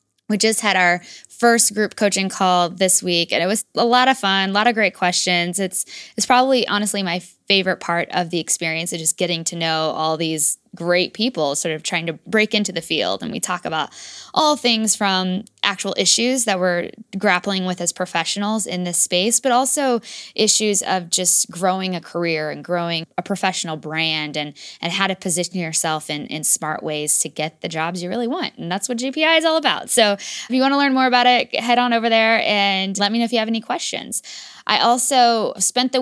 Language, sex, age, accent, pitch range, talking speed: English, female, 10-29, American, 175-220 Hz, 220 wpm